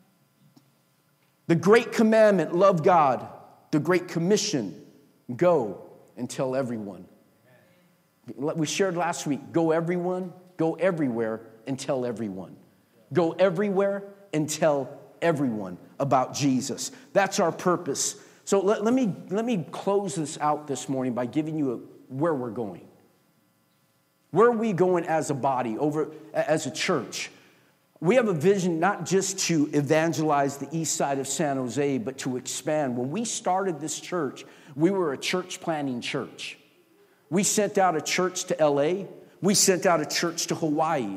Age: 40-59